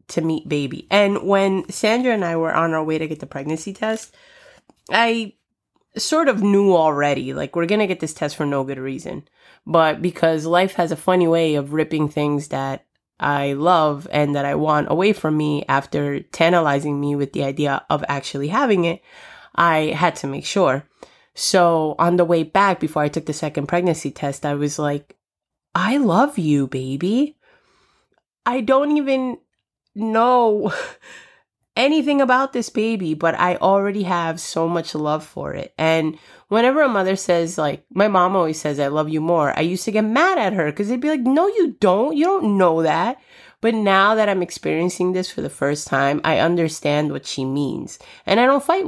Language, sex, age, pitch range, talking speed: English, female, 20-39, 150-215 Hz, 190 wpm